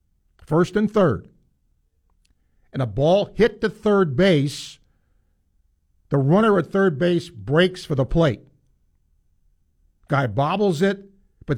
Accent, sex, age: American, male, 50-69